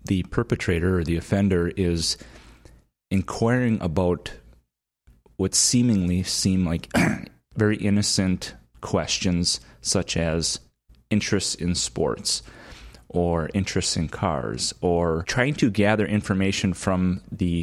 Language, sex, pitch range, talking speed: English, male, 85-105 Hz, 105 wpm